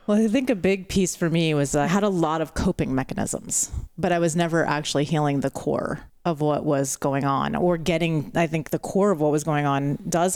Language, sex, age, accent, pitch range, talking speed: English, female, 30-49, American, 145-175 Hz, 240 wpm